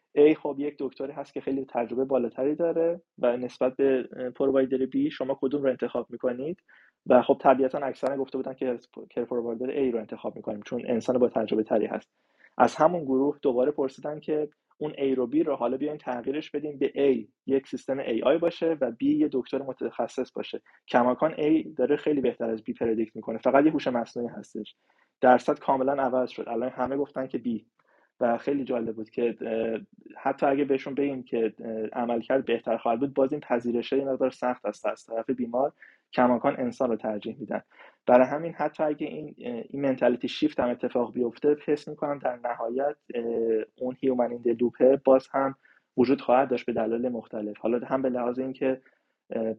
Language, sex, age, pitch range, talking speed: Persian, male, 20-39, 120-140 Hz, 180 wpm